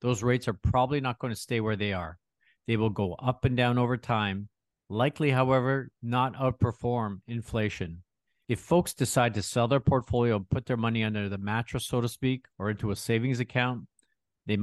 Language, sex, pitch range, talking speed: English, male, 105-125 Hz, 195 wpm